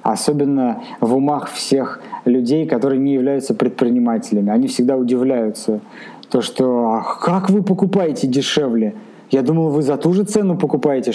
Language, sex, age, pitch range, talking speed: Russian, male, 20-39, 120-180 Hz, 140 wpm